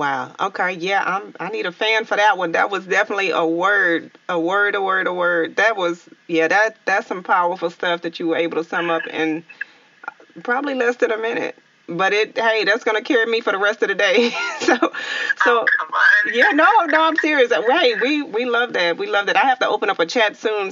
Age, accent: 30-49, American